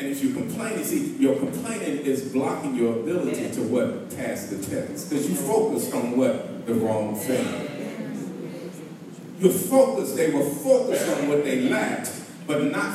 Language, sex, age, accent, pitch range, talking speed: English, male, 40-59, American, 155-240 Hz, 165 wpm